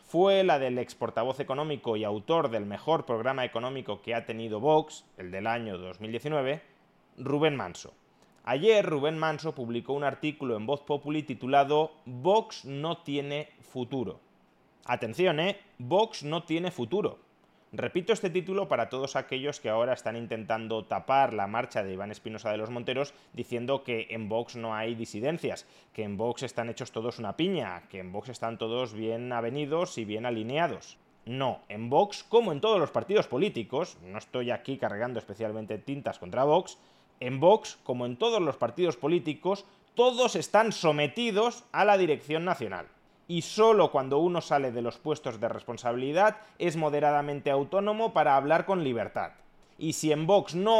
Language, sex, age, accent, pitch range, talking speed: Spanish, male, 30-49, Spanish, 120-170 Hz, 165 wpm